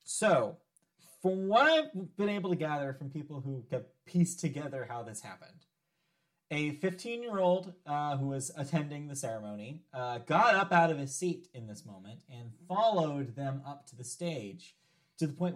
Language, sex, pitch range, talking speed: English, male, 140-175 Hz, 180 wpm